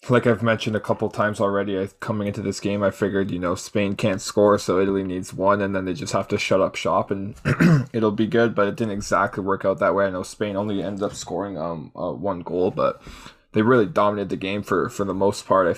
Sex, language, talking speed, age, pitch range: male, English, 255 wpm, 10-29, 95-110 Hz